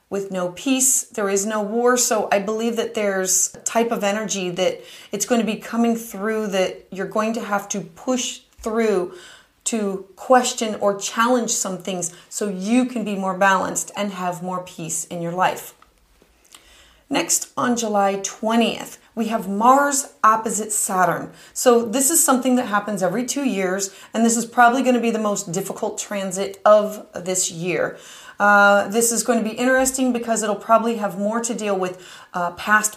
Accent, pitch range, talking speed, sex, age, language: American, 195-240 Hz, 175 wpm, female, 30-49, English